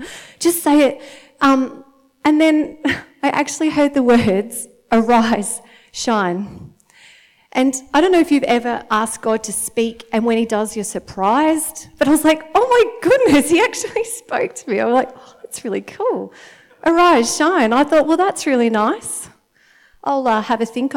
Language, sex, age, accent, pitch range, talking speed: English, female, 40-59, Australian, 215-275 Hz, 175 wpm